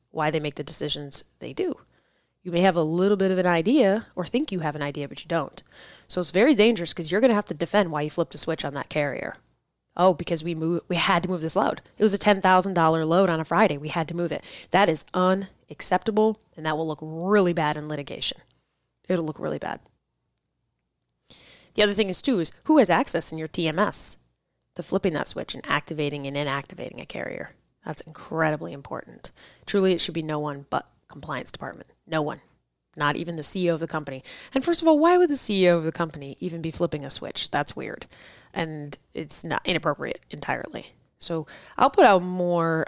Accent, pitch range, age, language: American, 155-190 Hz, 20-39, English